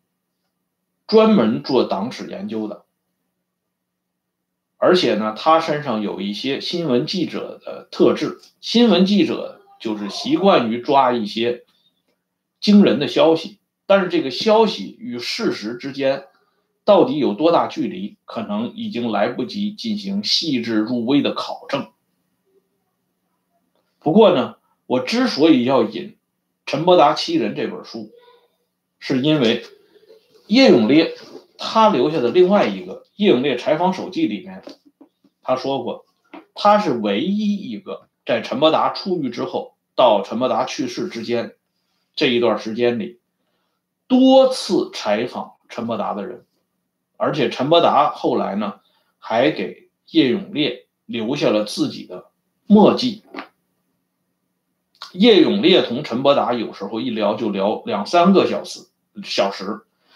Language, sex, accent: Swedish, male, Chinese